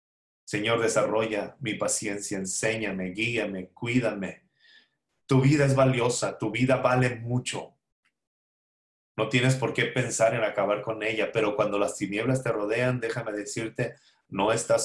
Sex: male